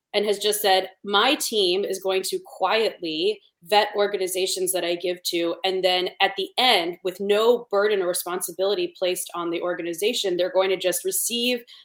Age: 20-39